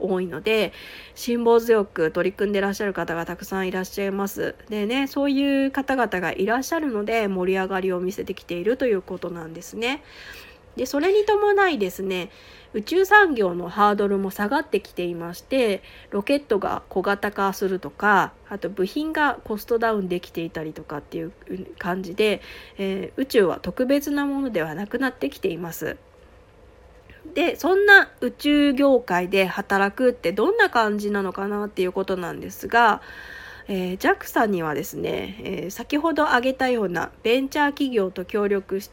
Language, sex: Japanese, female